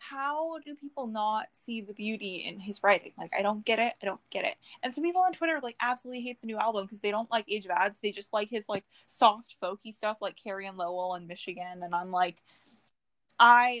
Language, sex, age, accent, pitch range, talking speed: English, female, 10-29, American, 190-235 Hz, 240 wpm